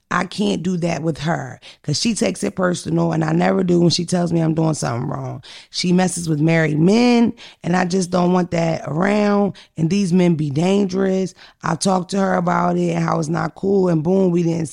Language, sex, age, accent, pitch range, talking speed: English, female, 20-39, American, 165-190 Hz, 225 wpm